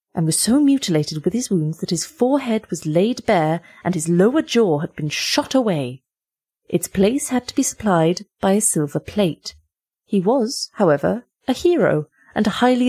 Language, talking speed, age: English, 175 wpm, 30-49